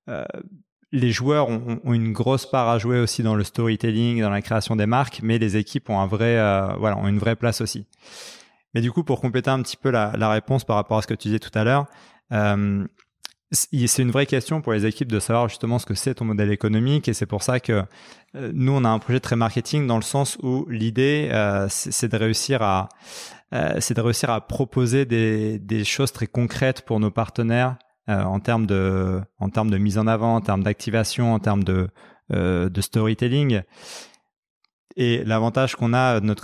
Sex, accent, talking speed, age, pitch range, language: male, French, 215 wpm, 20-39, 105-125 Hz, French